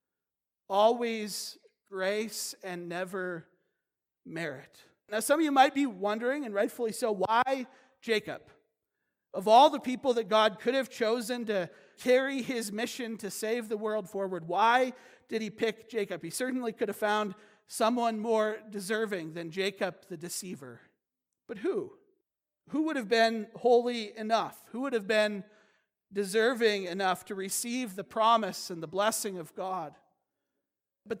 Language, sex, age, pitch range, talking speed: English, male, 40-59, 200-240 Hz, 145 wpm